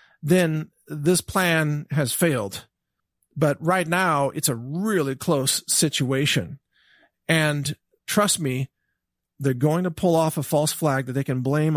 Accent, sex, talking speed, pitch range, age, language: American, male, 145 wpm, 140-180 Hz, 40-59, English